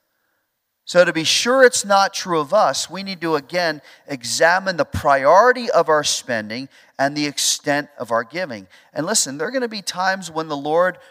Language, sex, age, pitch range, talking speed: English, male, 40-59, 135-185 Hz, 195 wpm